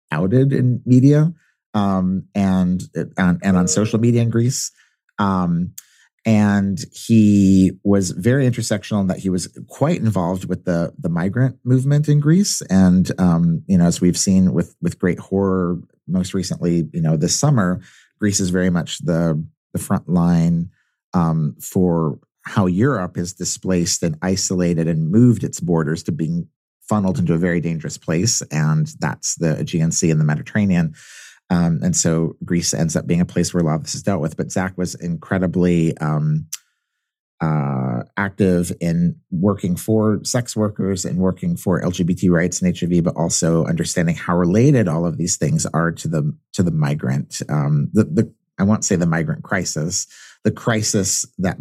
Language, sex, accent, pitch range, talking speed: English, male, American, 85-110 Hz, 165 wpm